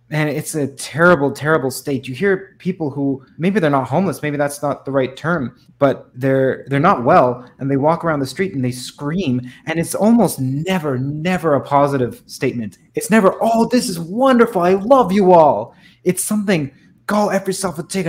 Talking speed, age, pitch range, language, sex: 195 wpm, 20-39, 130-175 Hz, English, male